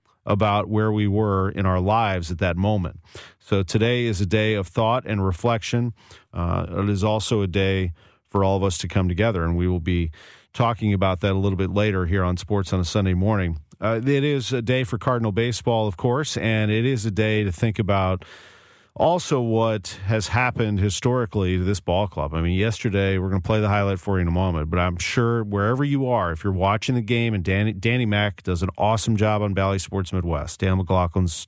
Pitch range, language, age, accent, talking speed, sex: 95-120 Hz, English, 40-59, American, 220 wpm, male